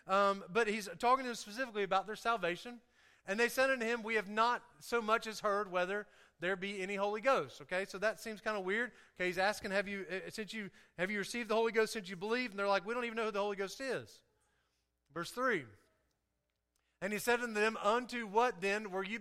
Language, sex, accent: English, male, American